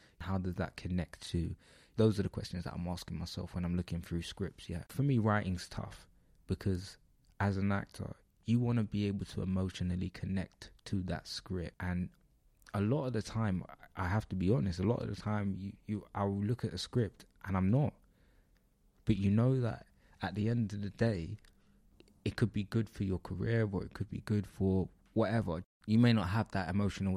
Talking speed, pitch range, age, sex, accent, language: 210 wpm, 90-100 Hz, 20-39, male, British, English